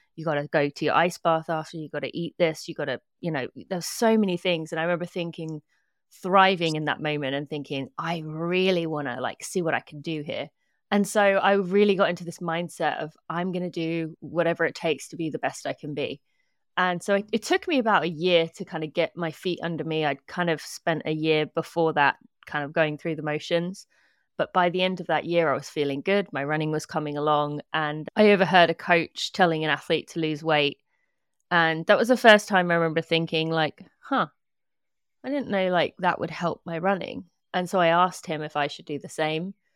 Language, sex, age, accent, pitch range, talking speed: English, female, 30-49, British, 155-185 Hz, 235 wpm